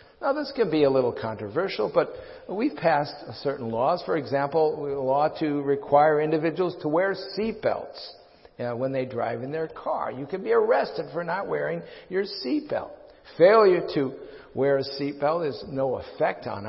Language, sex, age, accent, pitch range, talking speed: English, male, 50-69, American, 135-200 Hz, 170 wpm